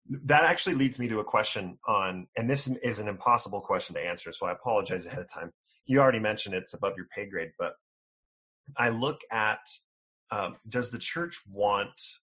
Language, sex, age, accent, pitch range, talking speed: English, male, 30-49, American, 95-125 Hz, 190 wpm